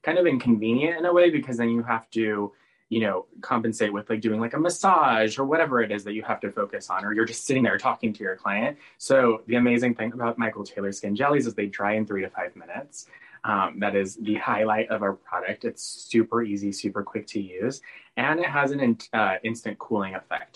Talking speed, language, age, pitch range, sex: 230 wpm, English, 20-39, 100-125 Hz, male